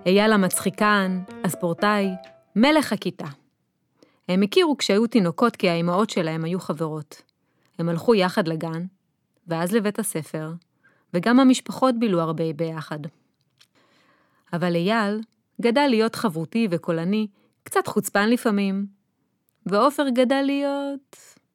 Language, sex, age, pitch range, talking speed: Hebrew, female, 30-49, 170-230 Hz, 105 wpm